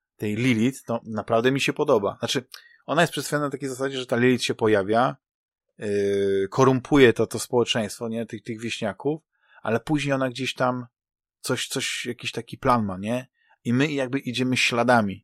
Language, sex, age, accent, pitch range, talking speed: Polish, male, 20-39, native, 110-130 Hz, 175 wpm